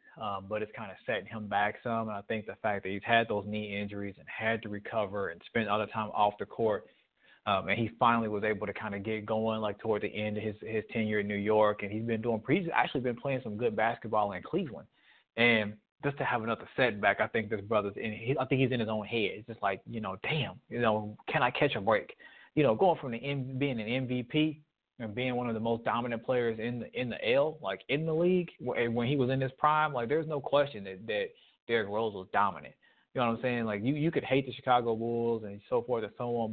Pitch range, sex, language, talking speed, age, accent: 105-125 Hz, male, English, 265 wpm, 20-39, American